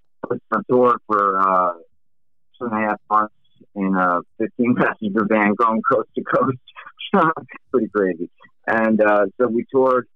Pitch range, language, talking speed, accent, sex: 95-110 Hz, English, 140 wpm, American, male